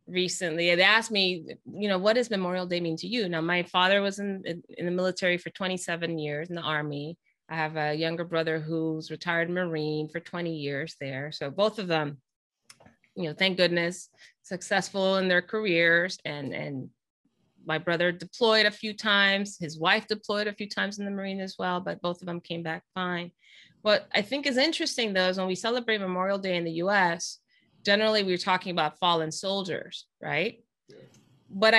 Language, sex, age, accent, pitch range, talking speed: English, female, 20-39, American, 170-220 Hz, 190 wpm